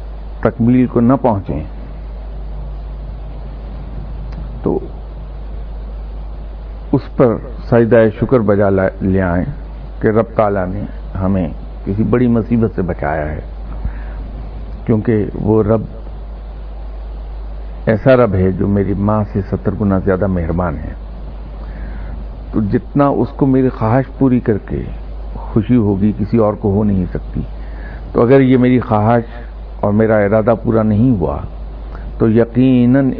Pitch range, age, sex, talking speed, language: 85-110 Hz, 60-79, male, 125 wpm, Urdu